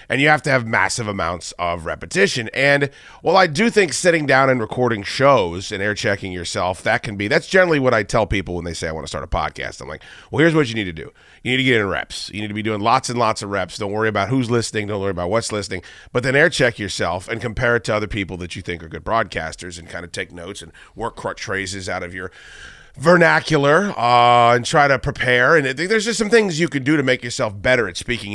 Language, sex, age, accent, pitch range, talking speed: English, male, 30-49, American, 100-145 Hz, 270 wpm